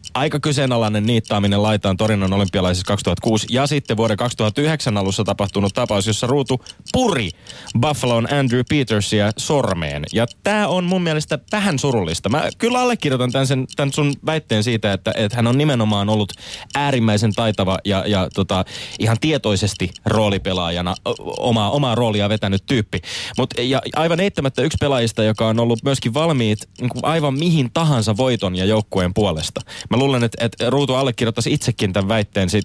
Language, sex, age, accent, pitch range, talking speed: Finnish, male, 20-39, native, 105-140 Hz, 145 wpm